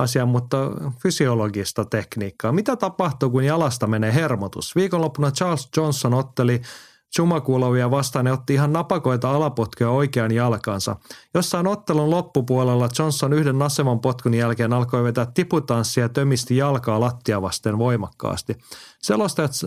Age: 30-49